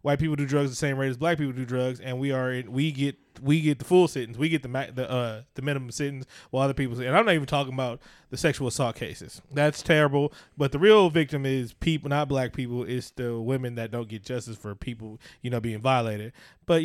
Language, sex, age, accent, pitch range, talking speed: English, male, 20-39, American, 130-165 Hz, 250 wpm